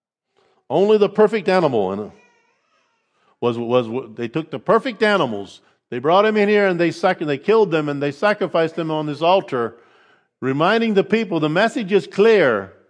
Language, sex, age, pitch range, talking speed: English, male, 50-69, 140-200 Hz, 170 wpm